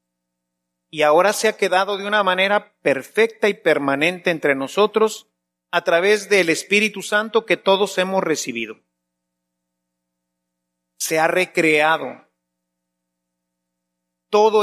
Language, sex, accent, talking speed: Spanish, male, Mexican, 105 wpm